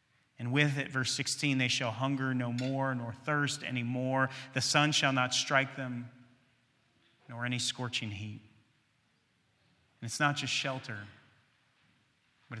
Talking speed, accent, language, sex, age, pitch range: 145 wpm, American, English, male, 30-49, 120-145 Hz